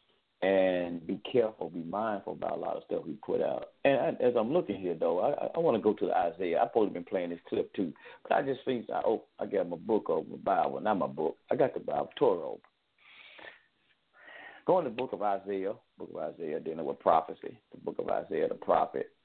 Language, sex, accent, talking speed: English, male, American, 235 wpm